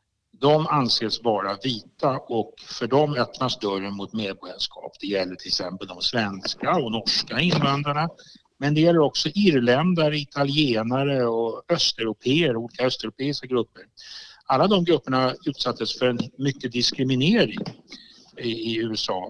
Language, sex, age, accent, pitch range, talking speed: Swedish, male, 60-79, Norwegian, 115-145 Hz, 125 wpm